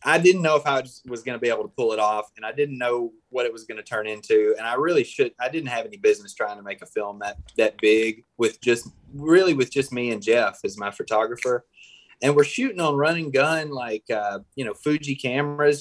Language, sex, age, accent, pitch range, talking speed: English, male, 20-39, American, 120-165 Hz, 245 wpm